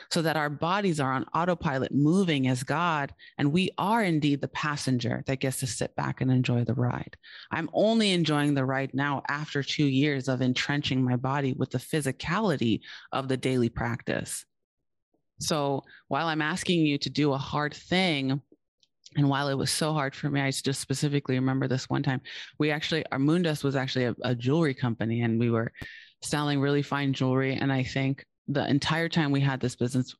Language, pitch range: English, 130-150 Hz